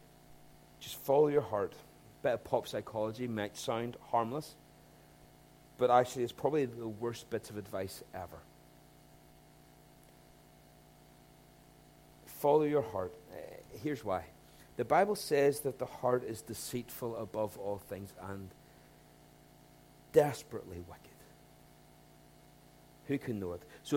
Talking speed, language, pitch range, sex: 115 wpm, English, 105-160 Hz, male